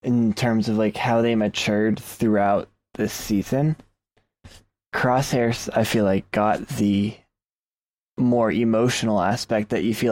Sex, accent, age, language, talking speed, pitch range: male, American, 20-39, English, 130 wpm, 100-115 Hz